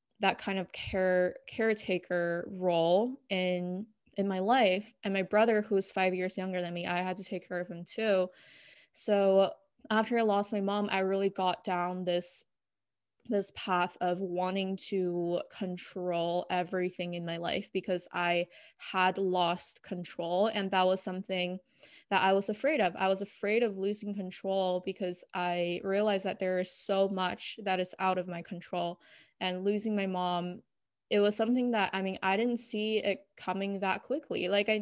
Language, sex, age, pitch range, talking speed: English, female, 20-39, 180-210 Hz, 175 wpm